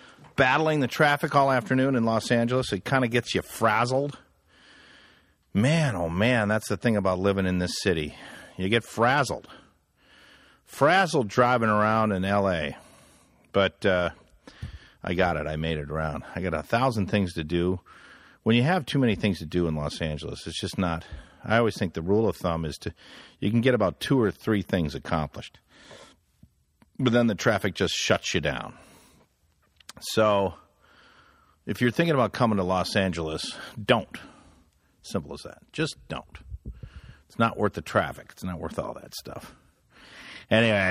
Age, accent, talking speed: 50-69, American, 170 wpm